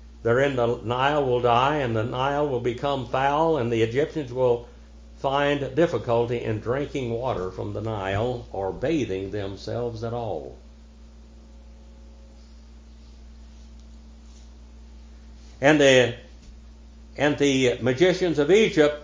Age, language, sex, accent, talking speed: 60-79, English, male, American, 105 wpm